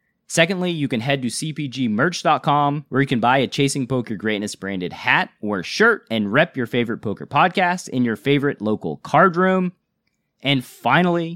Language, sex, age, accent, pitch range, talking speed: English, male, 30-49, American, 120-180 Hz, 170 wpm